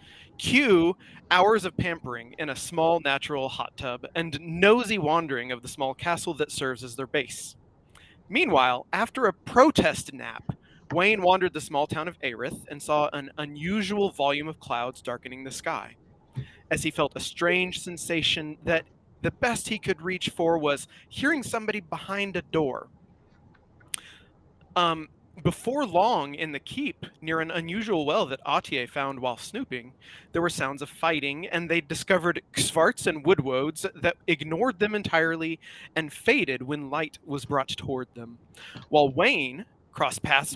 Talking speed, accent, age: 155 wpm, American, 30-49